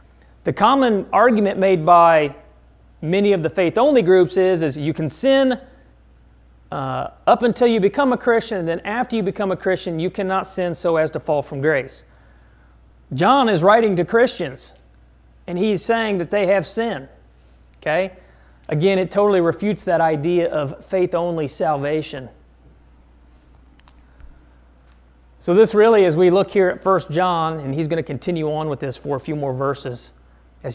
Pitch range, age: 130-200 Hz, 40-59